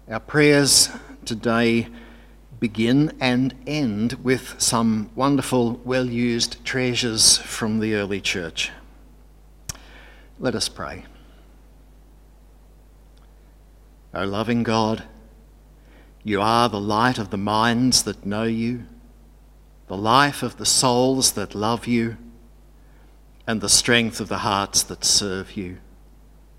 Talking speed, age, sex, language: 110 wpm, 60-79, male, English